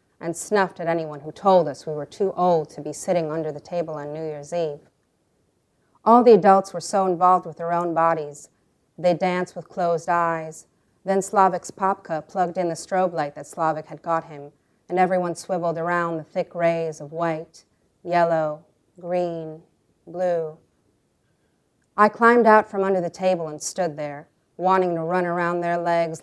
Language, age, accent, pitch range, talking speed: English, 40-59, American, 155-180 Hz, 175 wpm